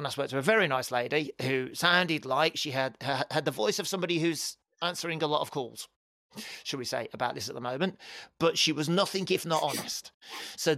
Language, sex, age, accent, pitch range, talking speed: English, male, 40-59, British, 130-170 Hz, 215 wpm